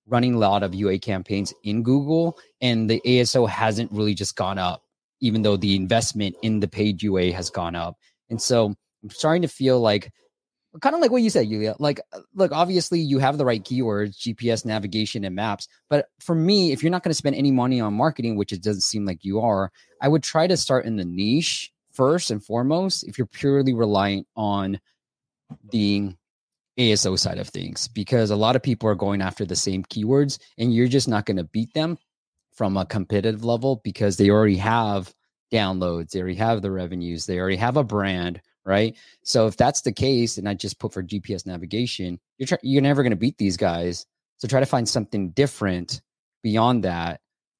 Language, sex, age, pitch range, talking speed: English, male, 20-39, 100-125 Hz, 205 wpm